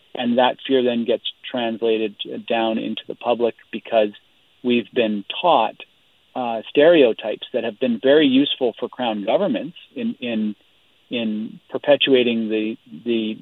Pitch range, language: 110-125 Hz, English